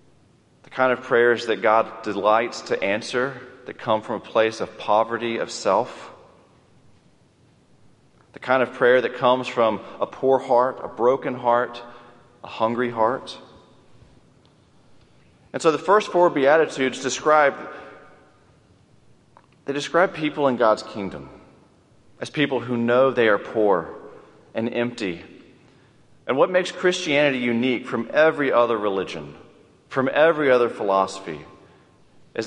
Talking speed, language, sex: 130 wpm, English, male